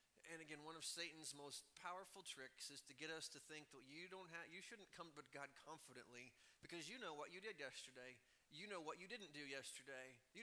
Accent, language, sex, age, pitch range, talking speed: American, English, male, 30-49, 140-180 Hz, 225 wpm